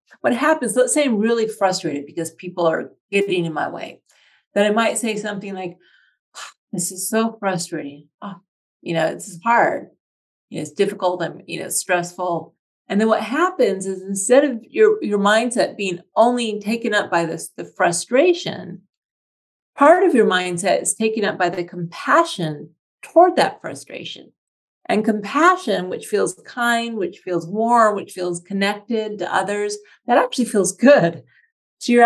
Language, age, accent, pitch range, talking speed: English, 40-59, American, 180-240 Hz, 165 wpm